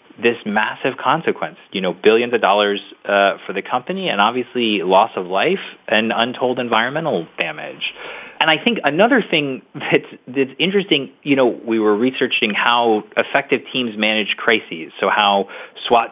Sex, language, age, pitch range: male, English, 30-49, 110-135 Hz